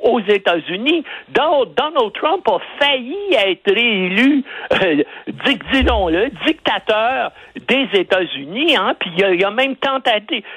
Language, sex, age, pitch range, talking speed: French, male, 60-79, 185-280 Hz, 135 wpm